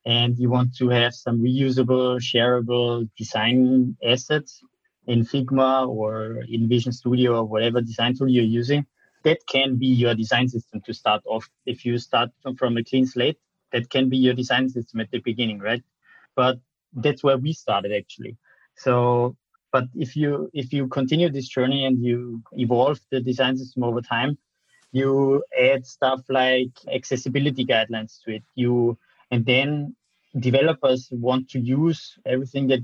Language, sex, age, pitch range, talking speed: English, male, 20-39, 120-135 Hz, 160 wpm